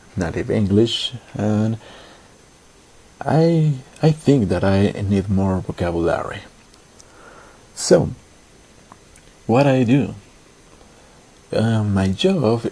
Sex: male